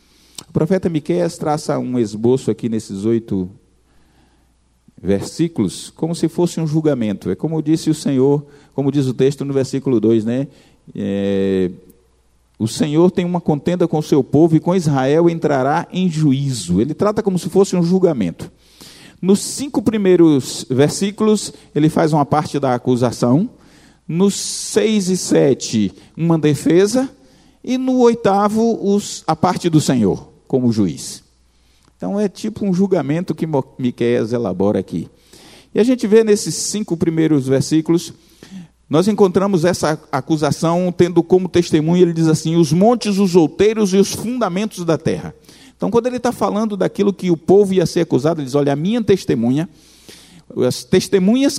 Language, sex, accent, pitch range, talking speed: Portuguese, male, Brazilian, 135-190 Hz, 155 wpm